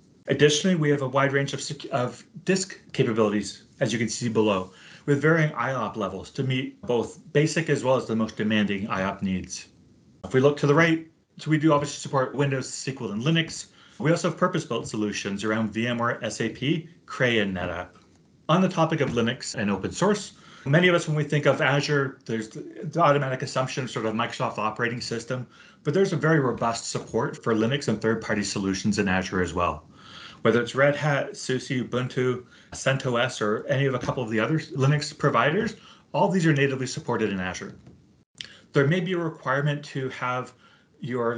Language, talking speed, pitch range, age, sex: English, 190 wpm, 115-150 Hz, 30-49, male